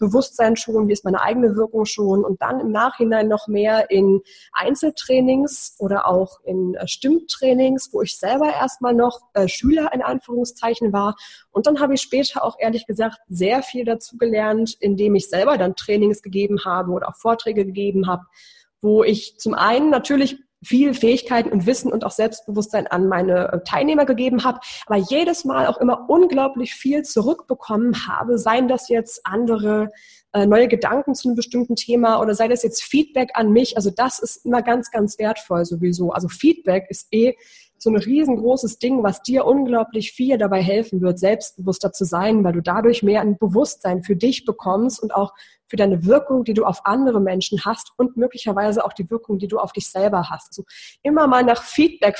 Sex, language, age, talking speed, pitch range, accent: female, German, 20-39, 185 wpm, 200-250 Hz, German